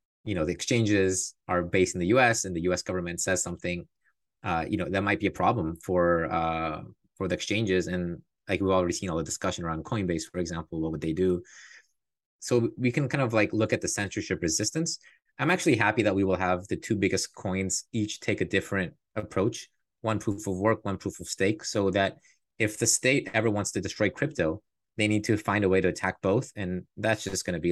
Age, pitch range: 20-39, 90-110 Hz